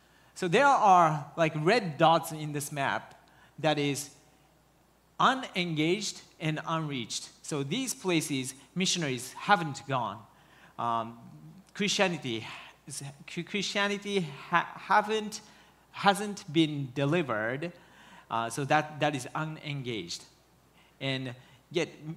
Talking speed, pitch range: 95 wpm, 130-170 Hz